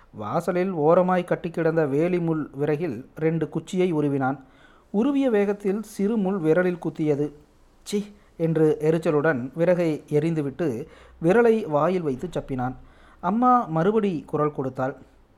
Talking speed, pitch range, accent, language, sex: 105 wpm, 150-190 Hz, native, Tamil, male